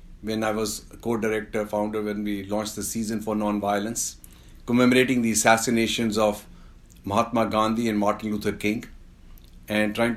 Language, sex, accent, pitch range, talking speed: English, male, Indian, 100-115 Hz, 140 wpm